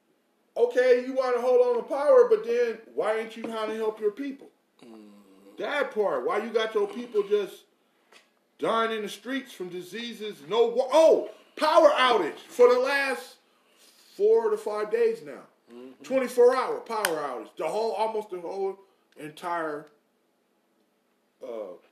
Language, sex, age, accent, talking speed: English, male, 20-39, American, 155 wpm